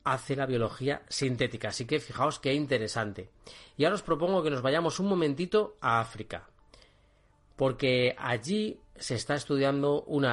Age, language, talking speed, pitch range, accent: 30-49, Spanish, 150 wpm, 115-145 Hz, Spanish